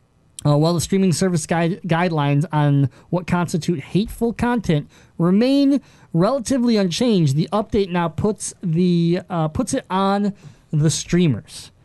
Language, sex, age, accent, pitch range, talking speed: English, male, 30-49, American, 150-195 Hz, 130 wpm